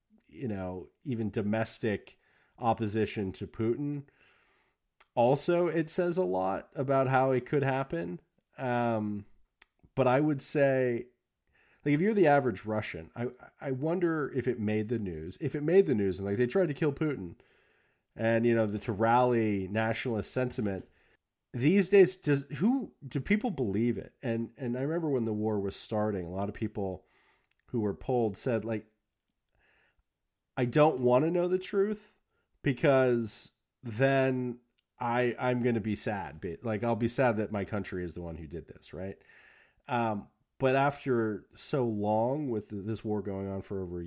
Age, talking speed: 30-49, 165 wpm